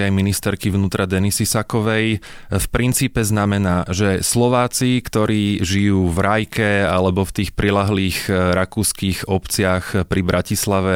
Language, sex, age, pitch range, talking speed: Slovak, male, 20-39, 95-110 Hz, 120 wpm